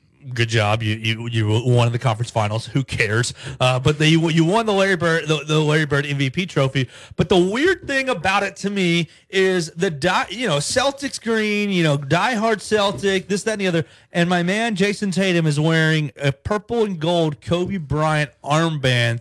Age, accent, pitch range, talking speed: 30-49, American, 125-180 Hz, 195 wpm